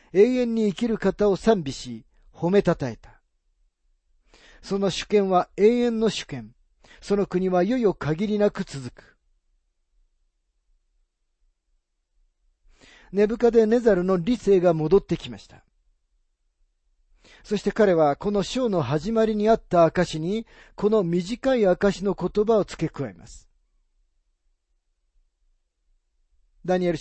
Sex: male